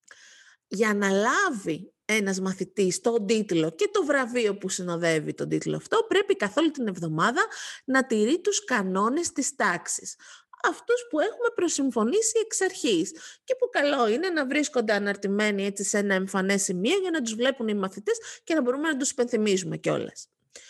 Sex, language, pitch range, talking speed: female, Greek, 200-315 Hz, 160 wpm